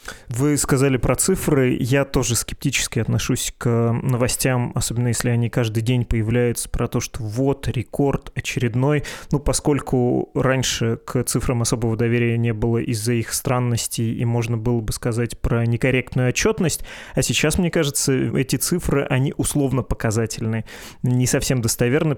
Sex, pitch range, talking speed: male, 120-145 Hz, 145 wpm